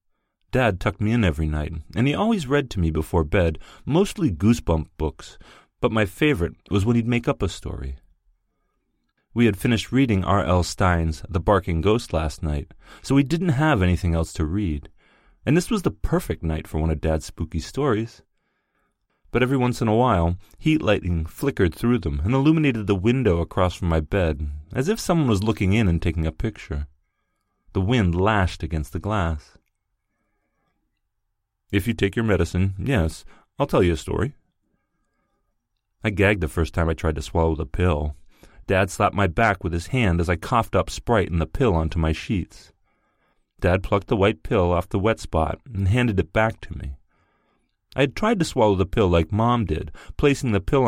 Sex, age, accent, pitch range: male, 30-49, American, 80-115 Hz